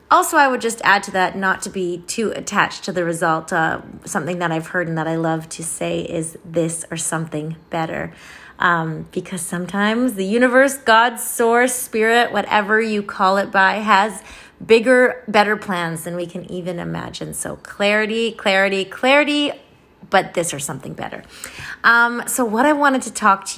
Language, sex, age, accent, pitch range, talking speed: English, female, 30-49, American, 175-220 Hz, 180 wpm